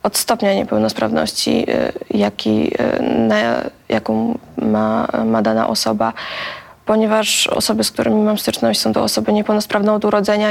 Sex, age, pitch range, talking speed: female, 20-39, 200-220 Hz, 125 wpm